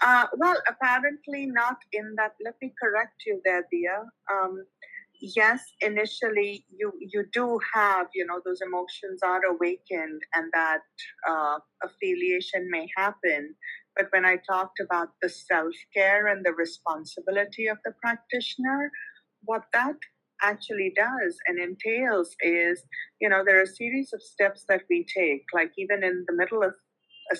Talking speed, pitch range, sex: 155 wpm, 175-235 Hz, female